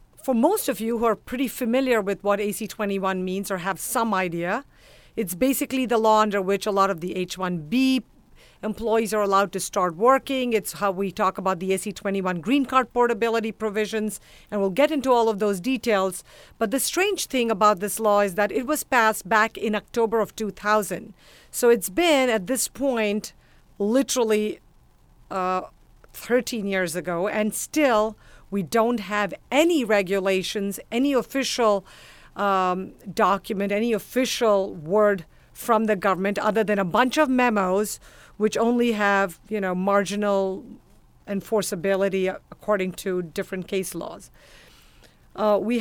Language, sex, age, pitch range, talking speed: English, female, 50-69, 195-235 Hz, 155 wpm